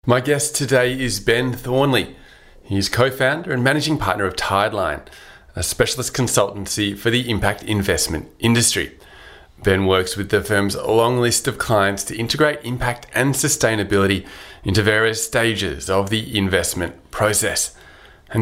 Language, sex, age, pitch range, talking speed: English, male, 30-49, 100-120 Hz, 140 wpm